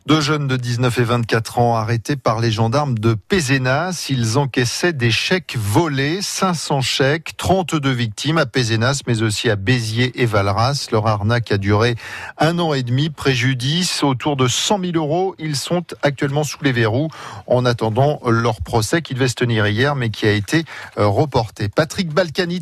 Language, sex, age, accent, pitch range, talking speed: French, male, 40-59, French, 115-145 Hz, 175 wpm